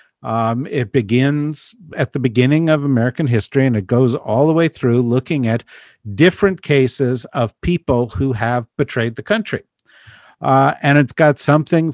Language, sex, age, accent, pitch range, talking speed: English, male, 50-69, American, 105-135 Hz, 160 wpm